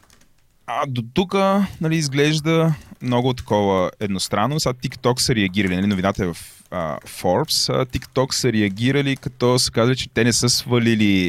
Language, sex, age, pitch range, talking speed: Bulgarian, male, 20-39, 95-125 Hz, 160 wpm